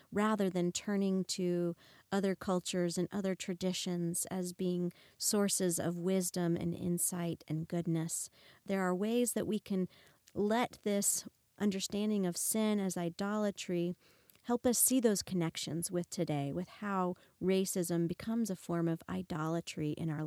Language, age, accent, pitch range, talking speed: English, 40-59, American, 170-205 Hz, 140 wpm